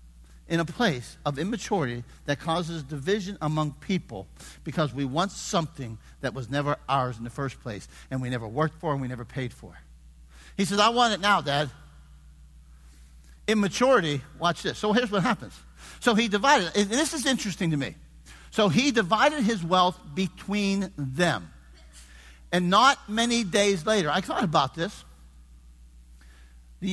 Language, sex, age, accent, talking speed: English, male, 50-69, American, 160 wpm